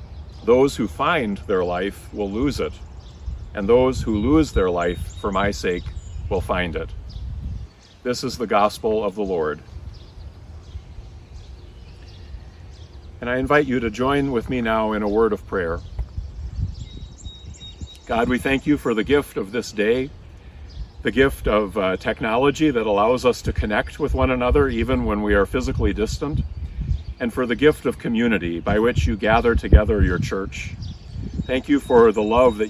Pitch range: 90-120 Hz